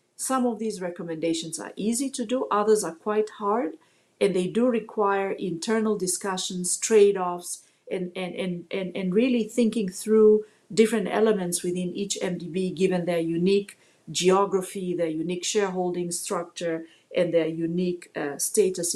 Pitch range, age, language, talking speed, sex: 175-220 Hz, 40-59, English, 140 wpm, female